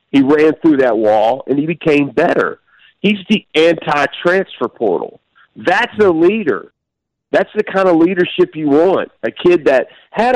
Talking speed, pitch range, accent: 155 wpm, 115-195 Hz, American